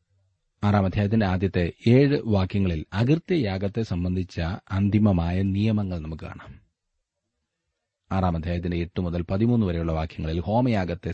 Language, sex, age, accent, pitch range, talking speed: Malayalam, male, 30-49, native, 85-115 Hz, 100 wpm